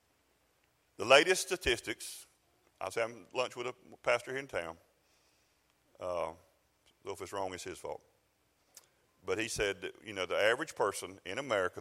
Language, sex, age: English, male, 50-69